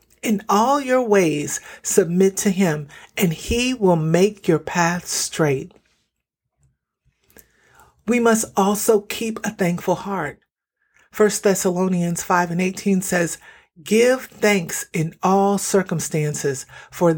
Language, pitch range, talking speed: English, 175-220 Hz, 115 wpm